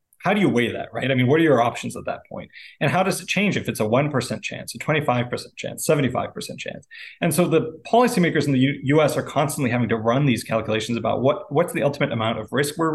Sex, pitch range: male, 115-150 Hz